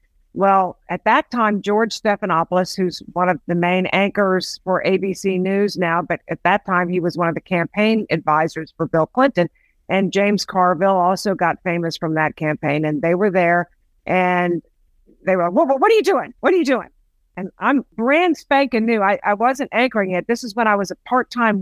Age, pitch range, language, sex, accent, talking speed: 50-69, 170-220 Hz, English, female, American, 205 wpm